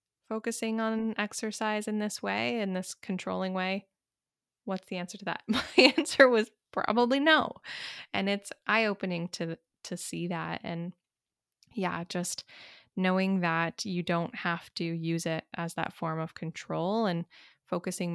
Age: 20-39